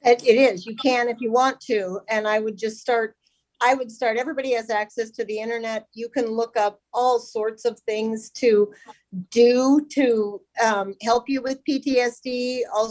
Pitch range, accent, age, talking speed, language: 200-245 Hz, American, 50-69, 180 wpm, English